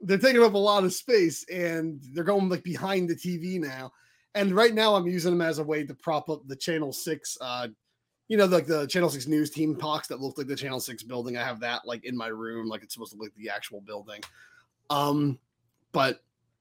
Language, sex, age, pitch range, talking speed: English, male, 30-49, 120-170 Hz, 230 wpm